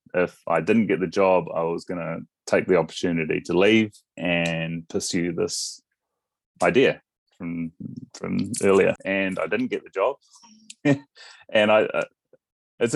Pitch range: 95-115 Hz